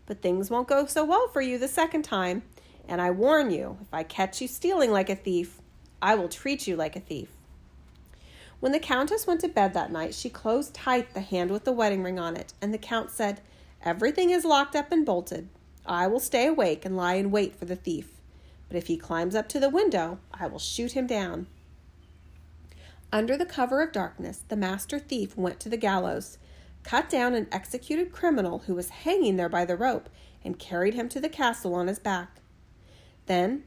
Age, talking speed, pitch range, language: 40-59, 210 wpm, 175-260 Hz, English